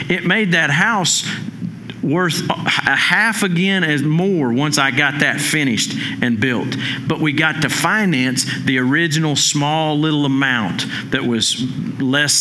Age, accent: 50-69, American